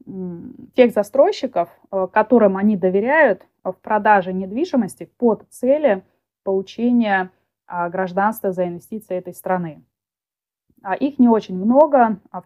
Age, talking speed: 20-39, 100 wpm